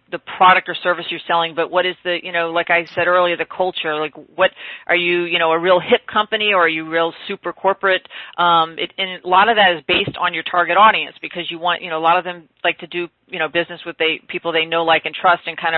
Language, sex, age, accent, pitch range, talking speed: English, female, 40-59, American, 165-185 Hz, 275 wpm